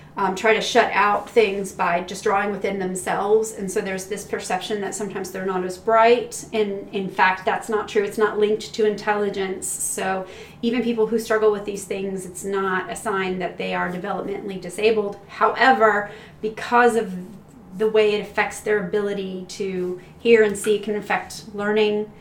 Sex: female